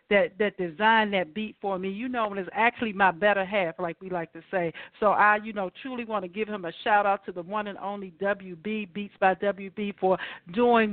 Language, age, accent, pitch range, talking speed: English, 50-69, American, 190-235 Hz, 230 wpm